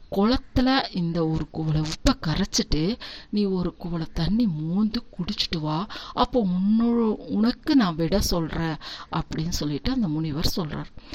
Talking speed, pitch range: 125 wpm, 175-235 Hz